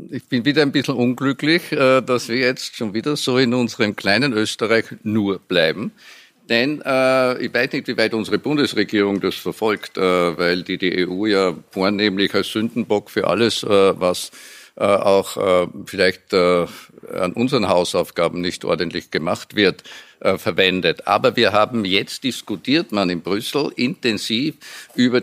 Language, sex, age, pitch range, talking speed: German, male, 50-69, 100-130 Hz, 140 wpm